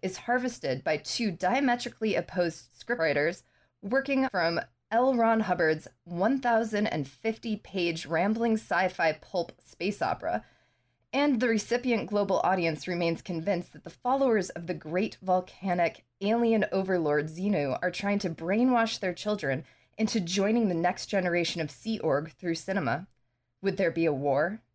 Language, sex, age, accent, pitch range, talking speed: English, female, 20-39, American, 155-210 Hz, 135 wpm